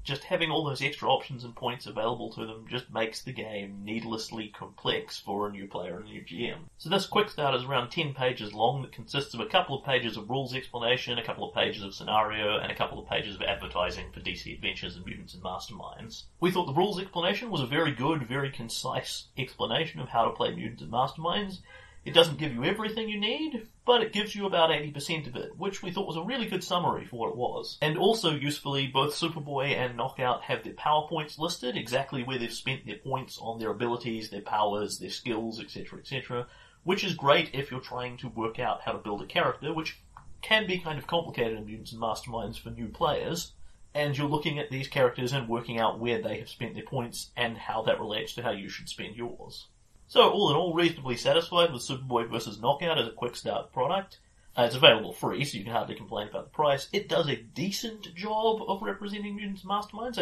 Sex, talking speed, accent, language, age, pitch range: male, 225 wpm, Australian, English, 30-49, 115-170 Hz